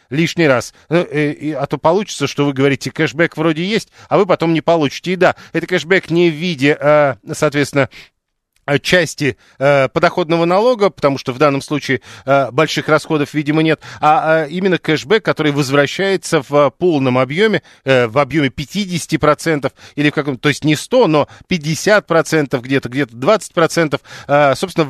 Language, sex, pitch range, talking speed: Russian, male, 140-170 Hz, 175 wpm